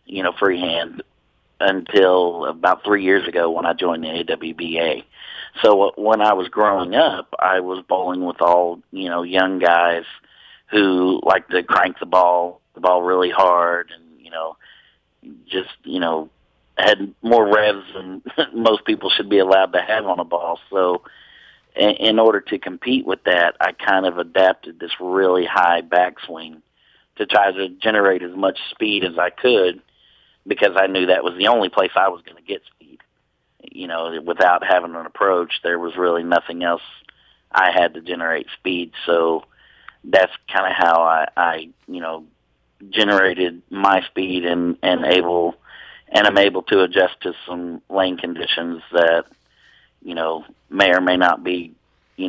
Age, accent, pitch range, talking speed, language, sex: 40-59, American, 85-95 Hz, 165 wpm, English, male